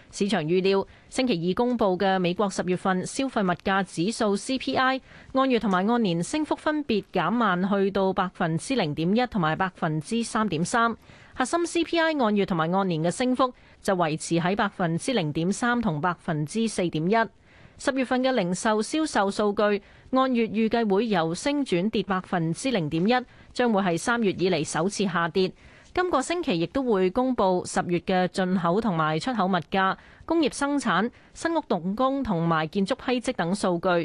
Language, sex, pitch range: Chinese, female, 180-240 Hz